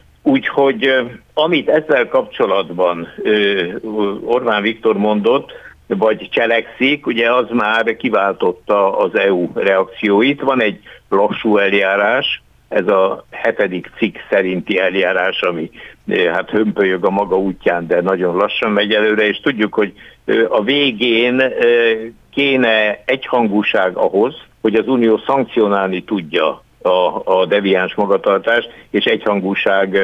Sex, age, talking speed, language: male, 60-79, 110 wpm, Hungarian